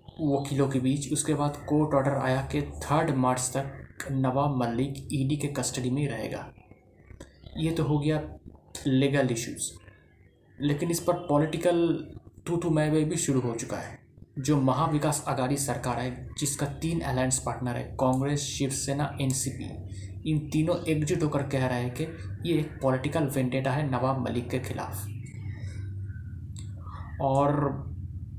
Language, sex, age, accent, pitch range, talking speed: Hindi, male, 20-39, native, 125-145 Hz, 145 wpm